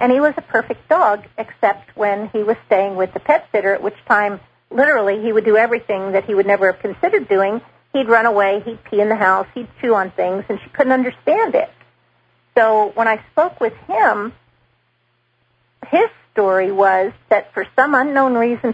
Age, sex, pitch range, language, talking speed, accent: 40-59, female, 200-245 Hz, English, 195 wpm, American